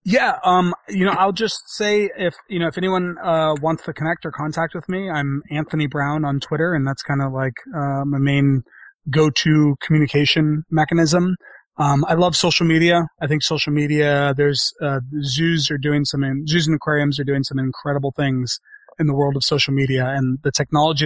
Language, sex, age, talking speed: English, male, 30-49, 200 wpm